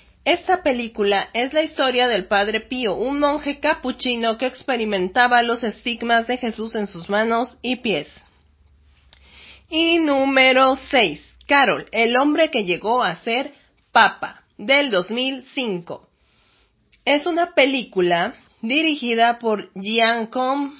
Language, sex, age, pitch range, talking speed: Spanish, female, 30-49, 205-275 Hz, 120 wpm